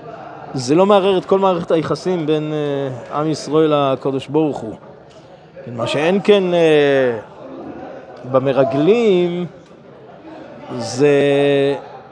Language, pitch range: Hebrew, 135-175 Hz